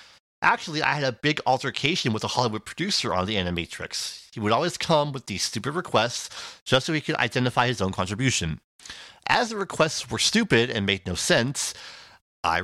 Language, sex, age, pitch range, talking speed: English, male, 40-59, 100-155 Hz, 185 wpm